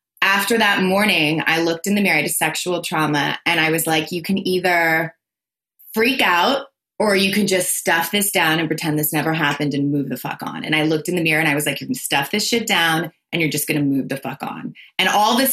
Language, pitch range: English, 160-215 Hz